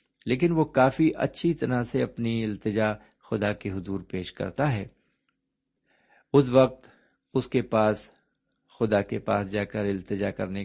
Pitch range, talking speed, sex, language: 105-140 Hz, 145 wpm, male, Urdu